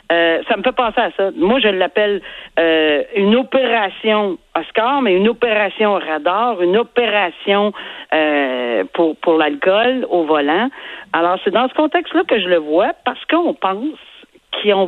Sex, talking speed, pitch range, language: female, 155 wpm, 165-230 Hz, French